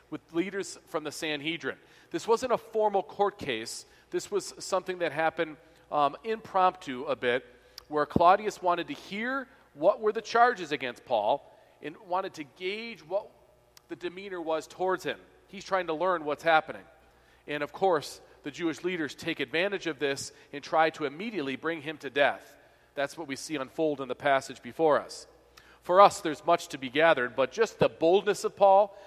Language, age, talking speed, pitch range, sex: English, 40-59, 180 wpm, 145-185 Hz, male